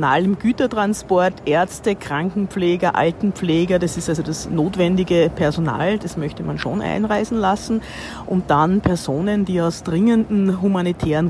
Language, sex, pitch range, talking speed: German, female, 150-200 Hz, 125 wpm